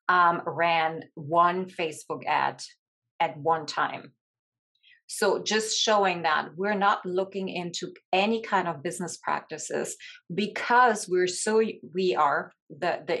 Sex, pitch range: female, 165-205 Hz